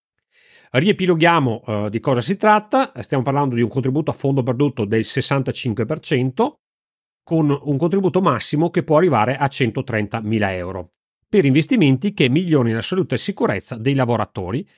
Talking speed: 140 wpm